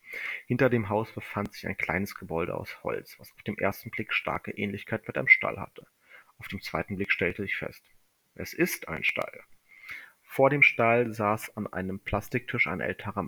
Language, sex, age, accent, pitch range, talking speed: German, male, 30-49, German, 100-120 Hz, 185 wpm